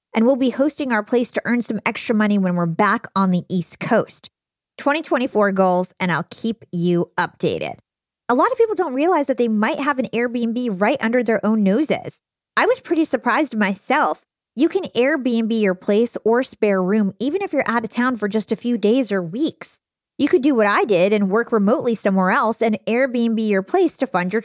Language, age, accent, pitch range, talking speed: English, 20-39, American, 195-255 Hz, 210 wpm